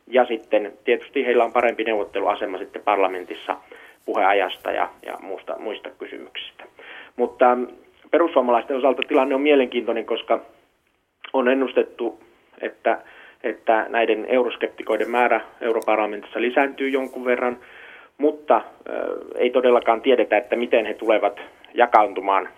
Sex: male